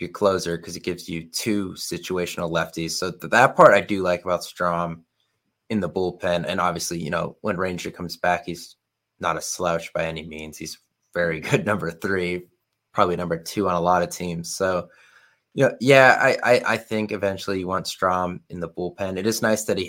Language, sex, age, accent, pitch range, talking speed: English, male, 20-39, American, 90-100 Hz, 210 wpm